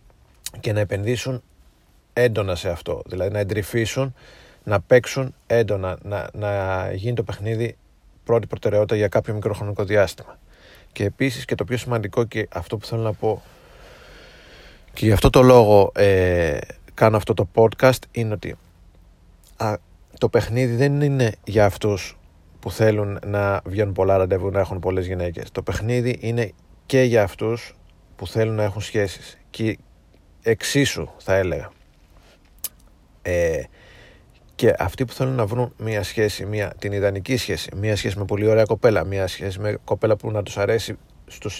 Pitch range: 95-115 Hz